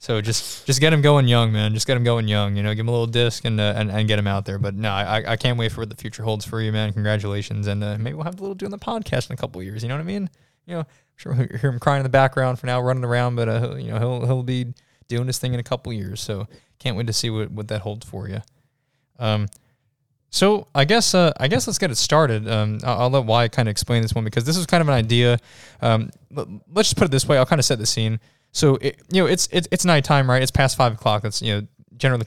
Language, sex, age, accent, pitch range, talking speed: English, male, 20-39, American, 110-135 Hz, 300 wpm